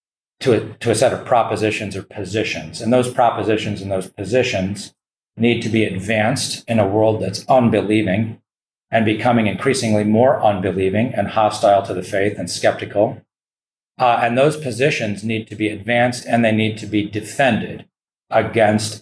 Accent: American